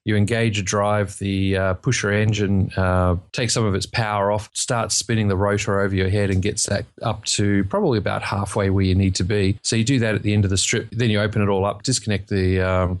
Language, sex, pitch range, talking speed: English, male, 95-110 Hz, 250 wpm